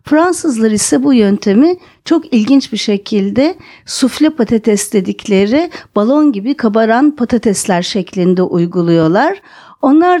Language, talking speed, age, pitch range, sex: Turkish, 105 wpm, 50-69, 215-300 Hz, female